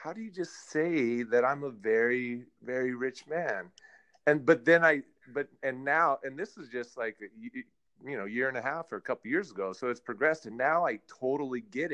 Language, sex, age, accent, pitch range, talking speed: English, male, 30-49, American, 115-155 Hz, 215 wpm